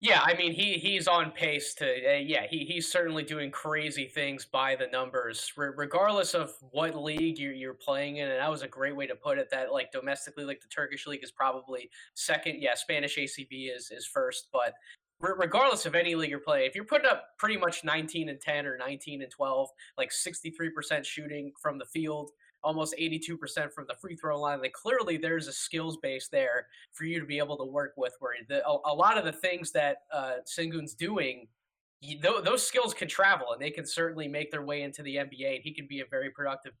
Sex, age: male, 10-29